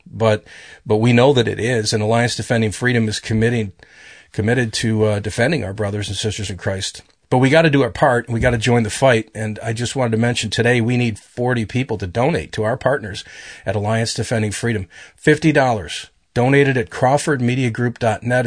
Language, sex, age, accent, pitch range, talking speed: English, male, 40-59, American, 110-135 Hz, 200 wpm